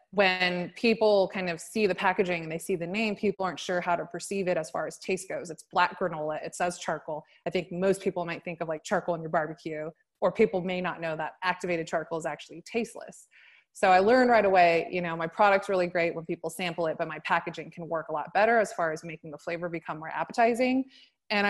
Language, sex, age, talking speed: English, female, 20-39, 240 wpm